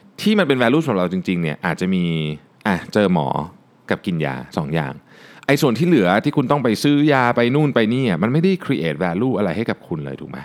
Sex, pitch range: male, 105-150 Hz